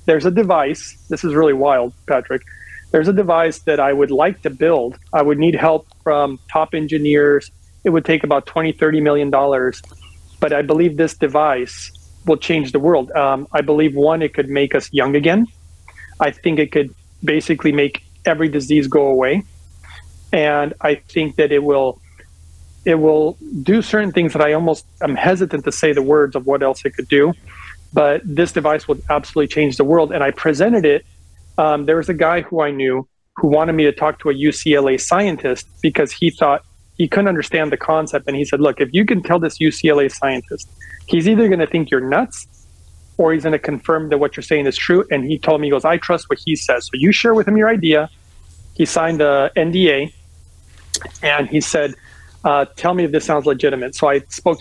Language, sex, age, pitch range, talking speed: English, male, 40-59, 135-160 Hz, 200 wpm